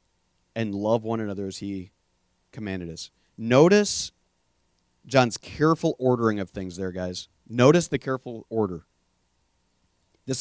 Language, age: English, 40-59